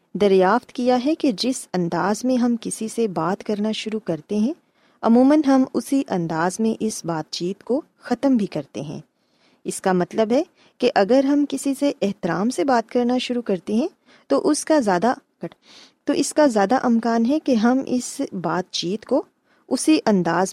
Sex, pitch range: female, 185-265 Hz